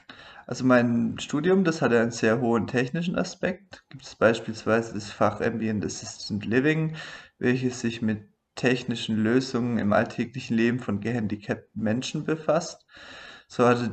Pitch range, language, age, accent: 115-130 Hz, German, 20-39, German